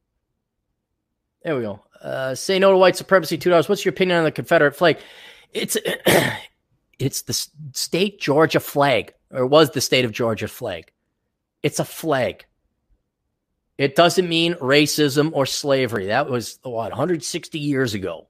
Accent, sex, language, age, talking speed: American, male, English, 30-49, 150 wpm